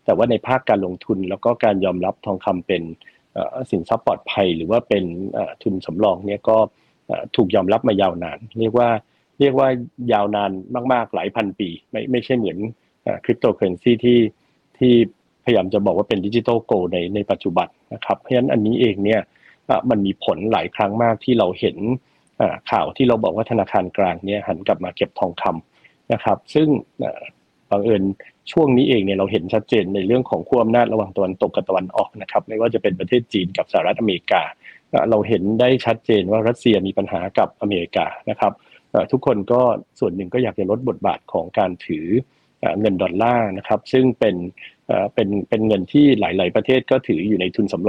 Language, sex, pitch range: Thai, male, 100-125 Hz